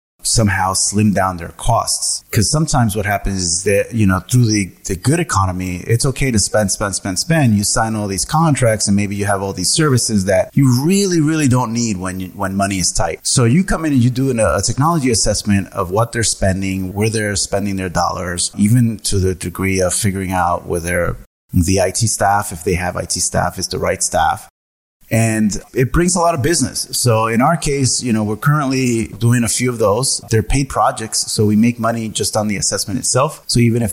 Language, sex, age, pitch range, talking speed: English, male, 30-49, 95-125 Hz, 215 wpm